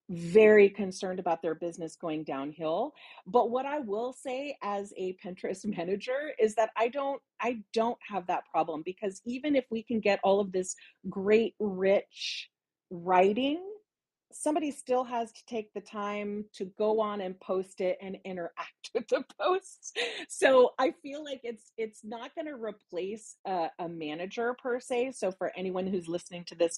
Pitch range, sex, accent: 190-245 Hz, female, American